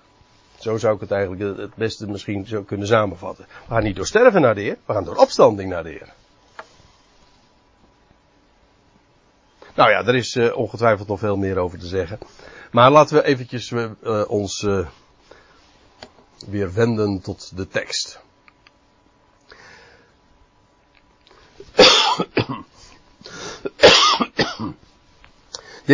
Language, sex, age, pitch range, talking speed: Dutch, male, 60-79, 100-130 Hz, 120 wpm